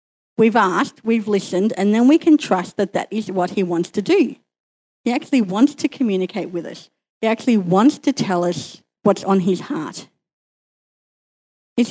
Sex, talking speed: female, 175 wpm